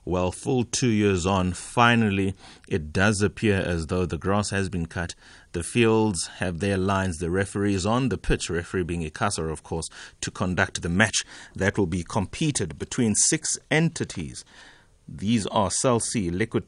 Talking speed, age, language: 165 wpm, 30-49, English